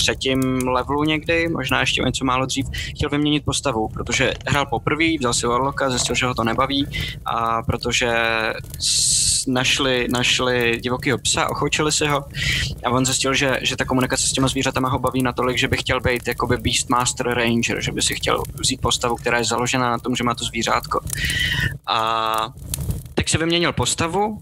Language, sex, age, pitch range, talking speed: Czech, male, 20-39, 120-140 Hz, 175 wpm